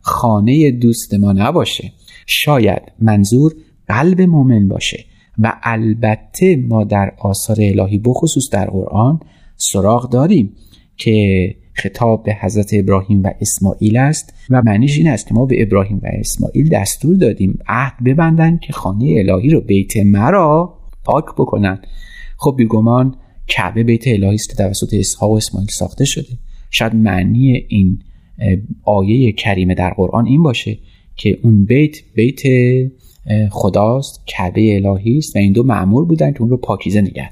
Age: 30-49